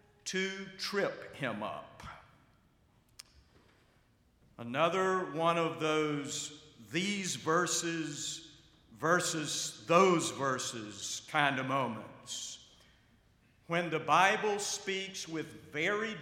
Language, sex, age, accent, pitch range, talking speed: English, male, 50-69, American, 120-165 Hz, 80 wpm